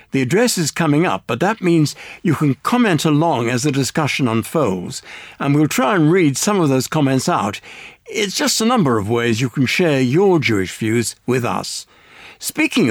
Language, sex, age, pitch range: English, male, 60-79, 125-180 Hz